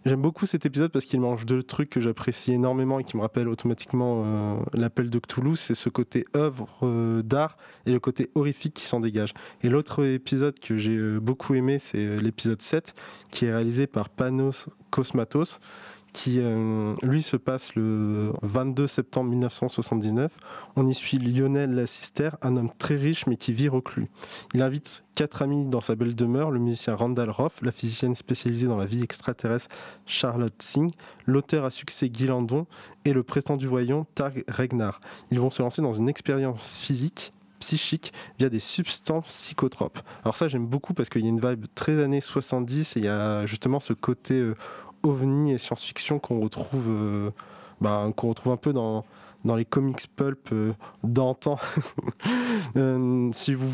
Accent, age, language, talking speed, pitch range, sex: French, 20-39, French, 180 wpm, 120-145 Hz, male